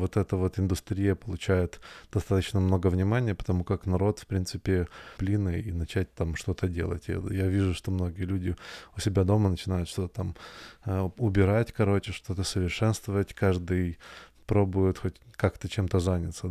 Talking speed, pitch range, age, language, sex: 145 wpm, 90-100 Hz, 20-39, Russian, male